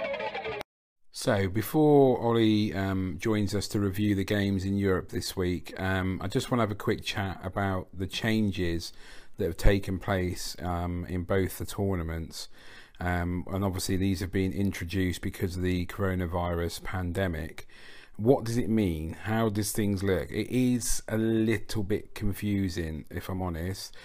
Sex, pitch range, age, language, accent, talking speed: male, 90-105 Hz, 40-59, English, British, 160 wpm